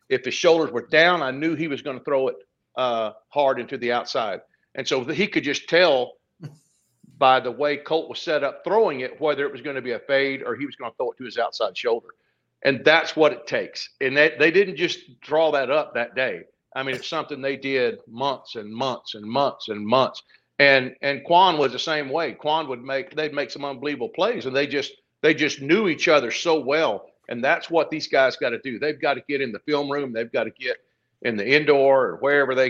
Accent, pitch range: American, 130-165 Hz